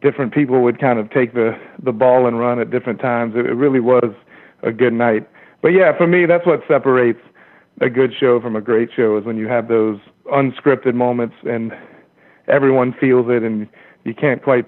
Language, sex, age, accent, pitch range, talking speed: English, male, 40-59, American, 115-135 Hz, 205 wpm